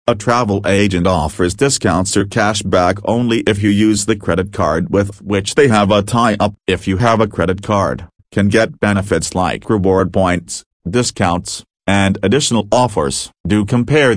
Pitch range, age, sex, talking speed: 95-115 Hz, 40-59, male, 165 wpm